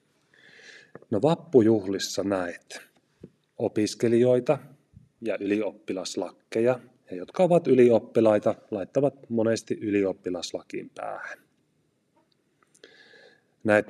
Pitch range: 100-125 Hz